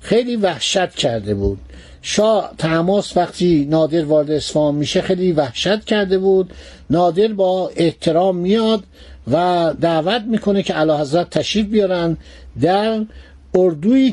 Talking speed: 125 wpm